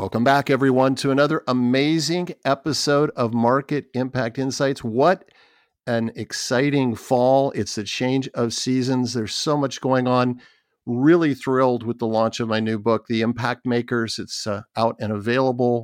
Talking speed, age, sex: 160 wpm, 50-69, male